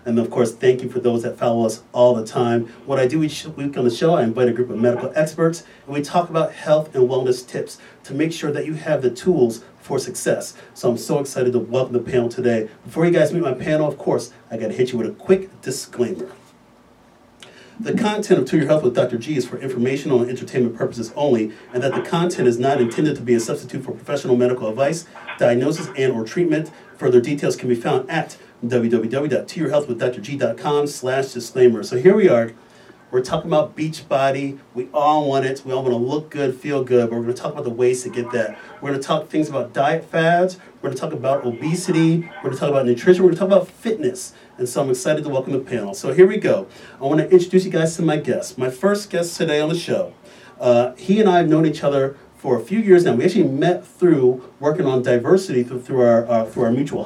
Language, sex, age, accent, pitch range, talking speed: English, male, 40-59, American, 125-165 Hz, 240 wpm